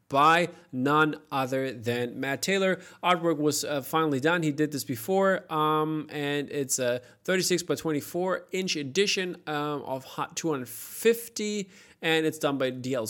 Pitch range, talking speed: 130-165 Hz, 150 wpm